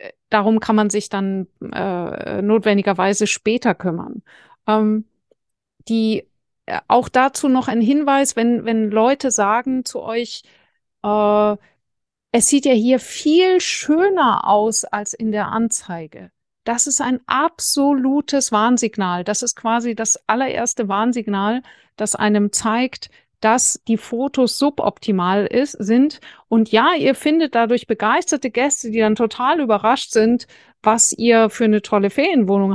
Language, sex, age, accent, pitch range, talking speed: German, female, 50-69, German, 210-255 Hz, 130 wpm